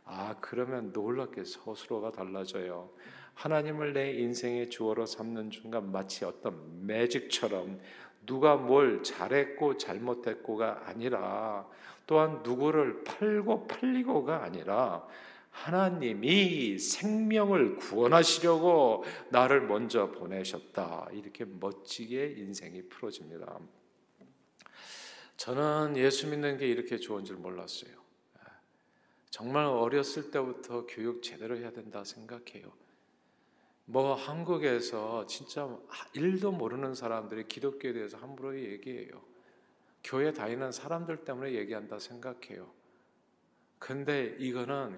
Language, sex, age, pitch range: Korean, male, 50-69, 115-150 Hz